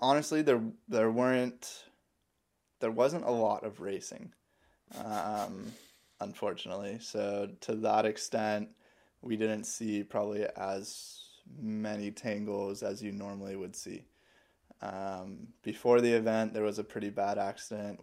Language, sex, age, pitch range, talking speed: English, male, 10-29, 100-105 Hz, 125 wpm